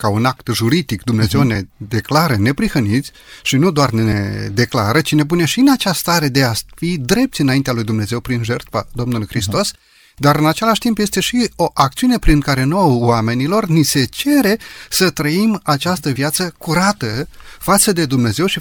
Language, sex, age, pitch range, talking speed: Romanian, male, 30-49, 120-170 Hz, 175 wpm